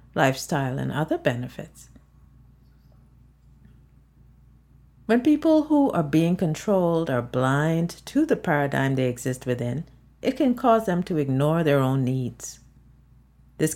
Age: 50-69